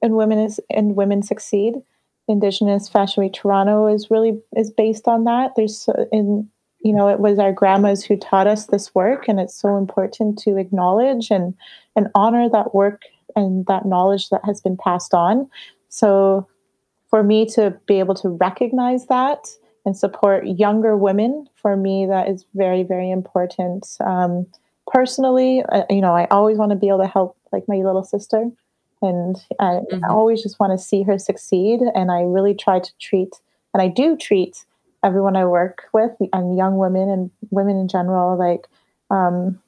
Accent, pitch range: American, 185-215 Hz